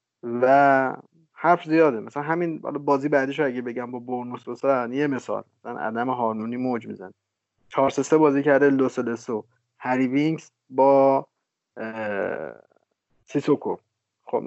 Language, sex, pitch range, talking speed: Persian, male, 125-155 Hz, 115 wpm